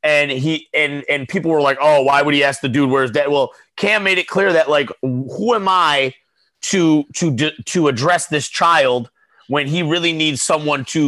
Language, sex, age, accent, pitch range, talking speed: English, male, 30-49, American, 135-165 Hz, 210 wpm